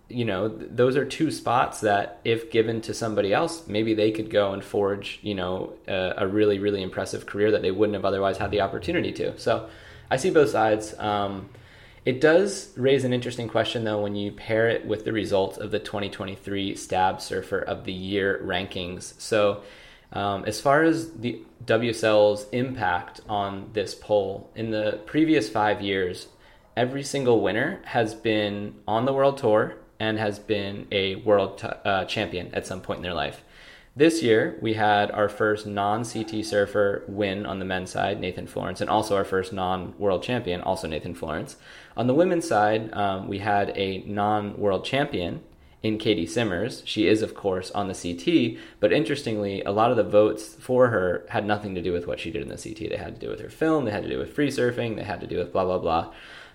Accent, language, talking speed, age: American, English, 200 wpm, 20-39